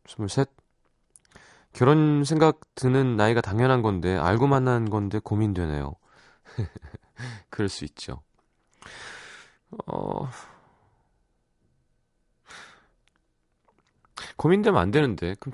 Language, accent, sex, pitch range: Korean, native, male, 95-135 Hz